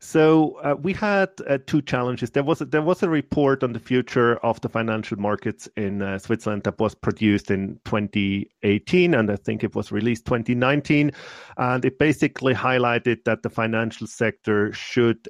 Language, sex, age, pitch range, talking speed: English, male, 40-59, 105-125 Hz, 175 wpm